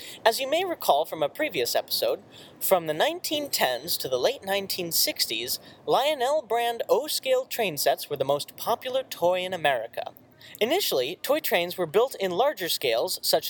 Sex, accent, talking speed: male, American, 160 wpm